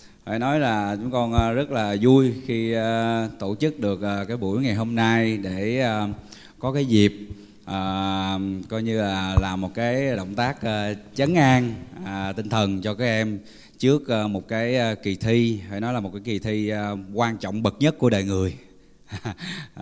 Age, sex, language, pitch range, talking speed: 20-39, male, Vietnamese, 100-125 Hz, 195 wpm